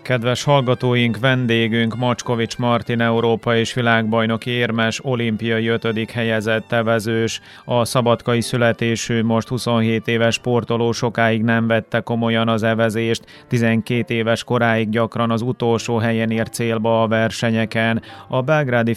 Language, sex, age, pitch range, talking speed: Hungarian, male, 30-49, 110-115 Hz, 125 wpm